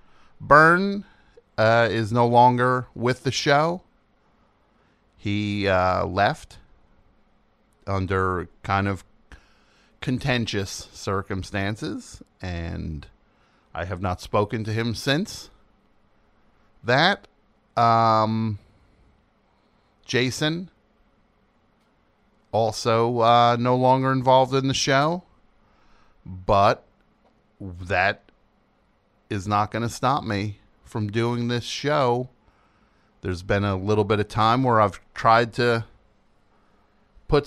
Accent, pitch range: American, 100-135 Hz